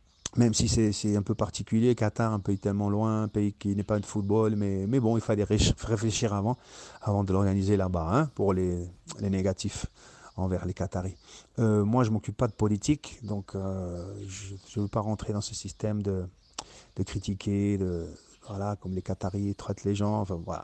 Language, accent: French, French